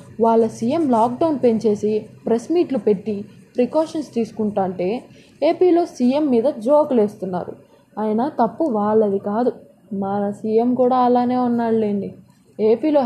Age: 20-39